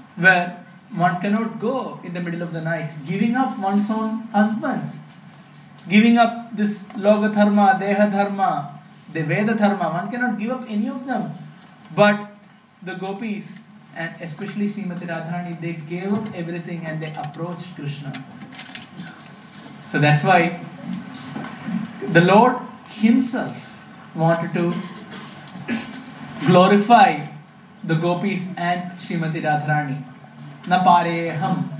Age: 20-39